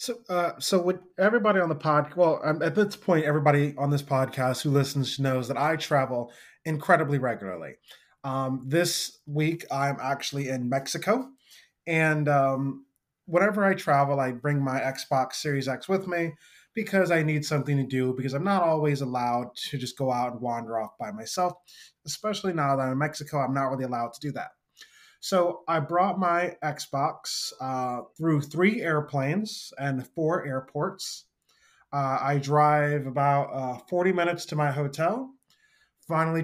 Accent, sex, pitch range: American, male, 135-175 Hz